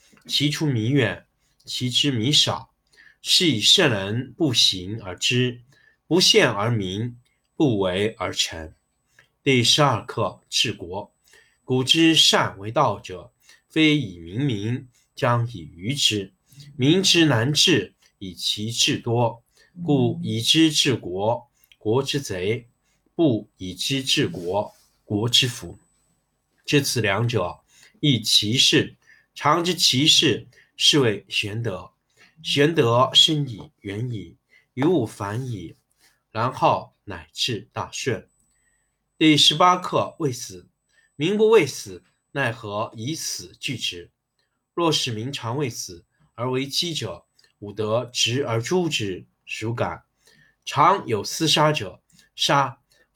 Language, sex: Chinese, male